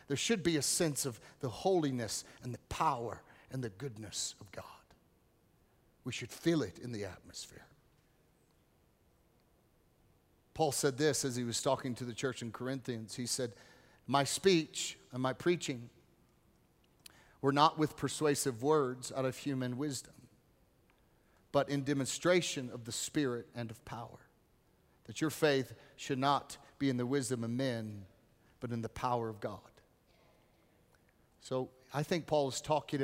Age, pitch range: 40-59, 120-145 Hz